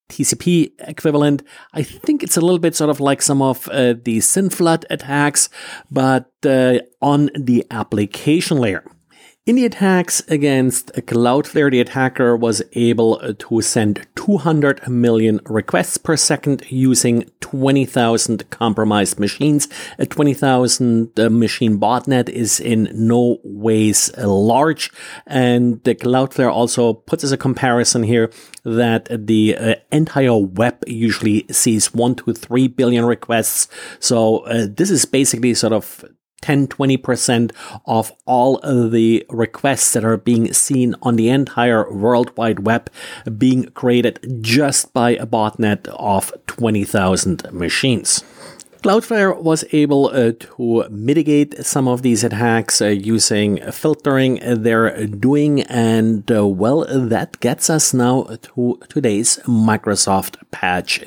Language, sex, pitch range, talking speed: English, male, 115-140 Hz, 125 wpm